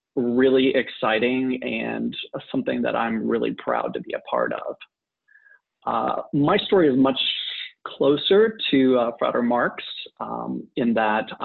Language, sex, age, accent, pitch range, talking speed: English, male, 30-49, American, 115-140 Hz, 135 wpm